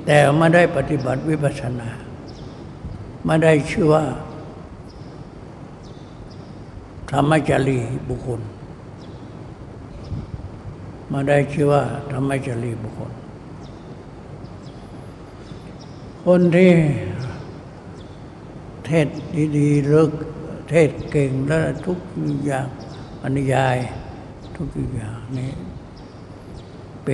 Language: Thai